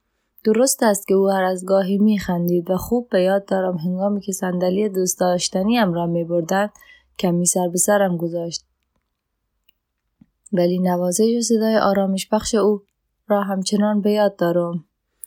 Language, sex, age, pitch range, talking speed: Persian, female, 20-39, 180-210 Hz, 140 wpm